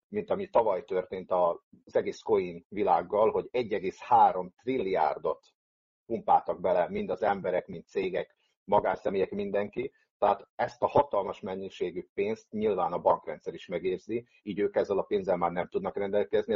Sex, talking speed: male, 145 wpm